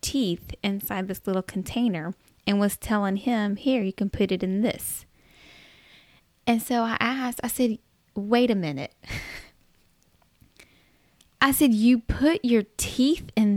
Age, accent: 10-29, American